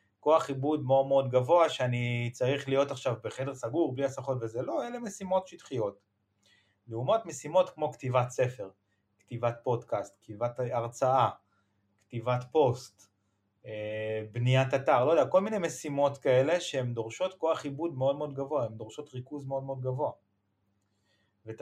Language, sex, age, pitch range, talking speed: Hebrew, male, 30-49, 110-145 Hz, 145 wpm